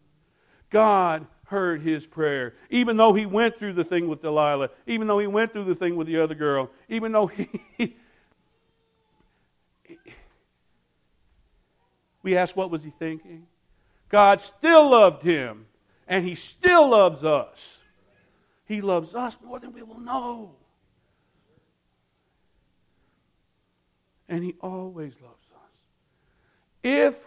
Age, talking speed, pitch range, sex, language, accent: 60-79, 125 wpm, 120-175 Hz, male, English, American